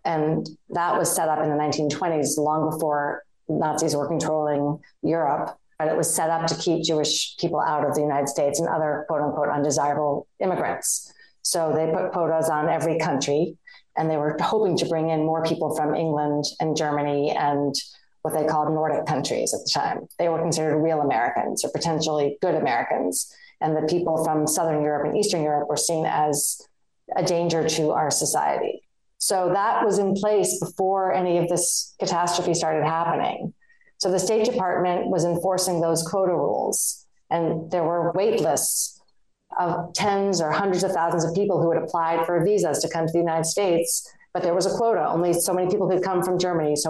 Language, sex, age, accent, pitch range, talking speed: English, female, 30-49, American, 155-180 Hz, 190 wpm